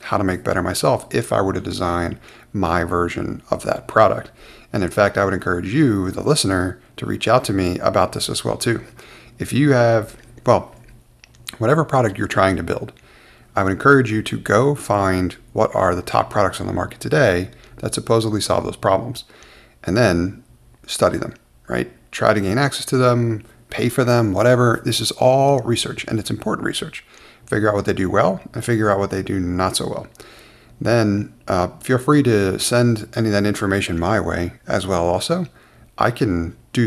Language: English